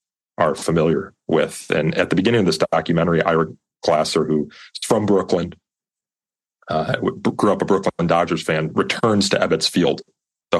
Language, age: English, 30-49